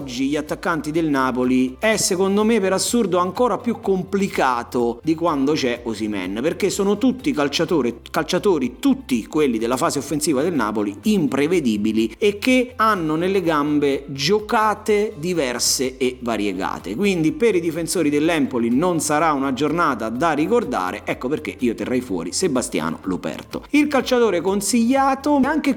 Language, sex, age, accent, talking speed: Italian, male, 30-49, native, 140 wpm